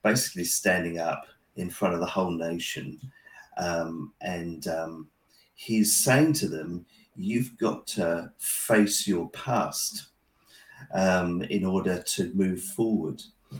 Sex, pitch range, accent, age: male, 90-115 Hz, British, 40-59